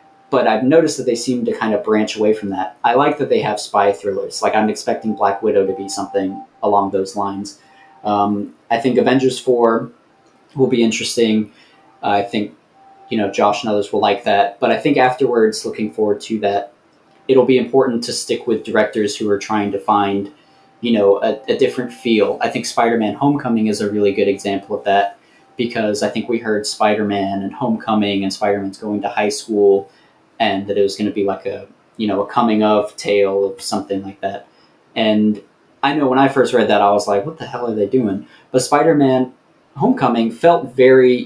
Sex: male